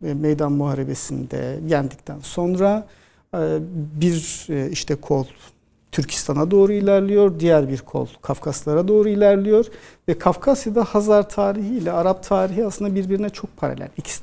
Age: 60-79